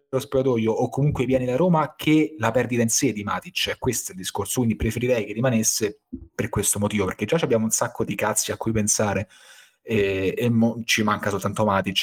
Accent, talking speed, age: native, 215 wpm, 30-49